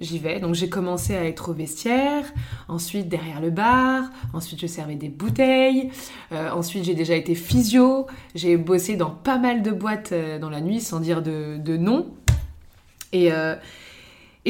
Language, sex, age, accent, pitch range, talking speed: French, female, 20-39, French, 170-235 Hz, 175 wpm